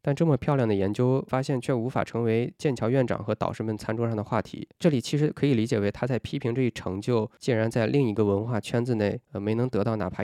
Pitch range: 105-130 Hz